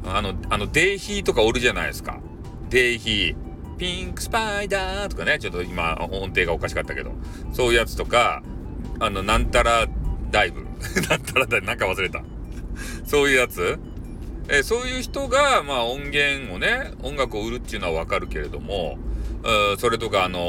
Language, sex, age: Japanese, male, 40-59